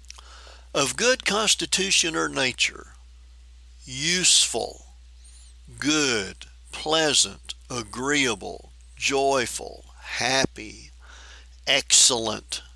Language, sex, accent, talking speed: English, male, American, 55 wpm